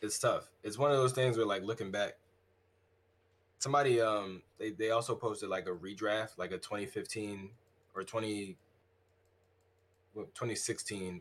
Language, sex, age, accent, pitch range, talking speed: English, male, 20-39, American, 90-115 Hz, 135 wpm